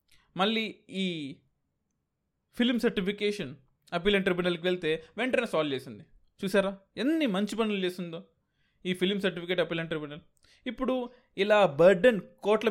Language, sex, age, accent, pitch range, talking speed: Telugu, male, 20-39, native, 180-225 Hz, 120 wpm